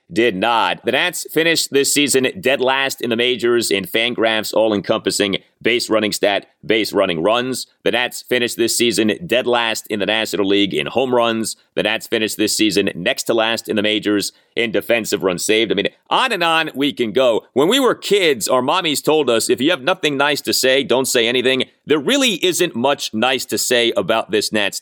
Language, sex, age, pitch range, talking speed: English, male, 30-49, 115-165 Hz, 215 wpm